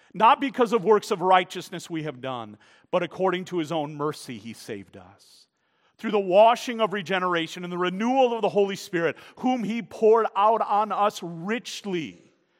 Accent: American